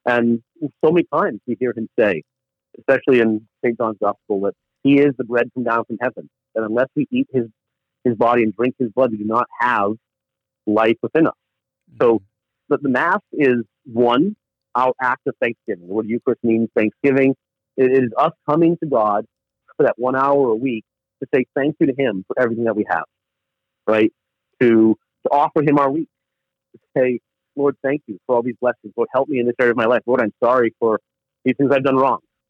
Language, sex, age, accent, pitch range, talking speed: English, male, 50-69, American, 115-135 Hz, 205 wpm